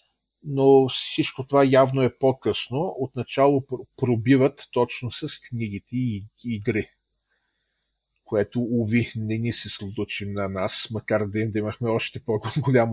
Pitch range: 105-125 Hz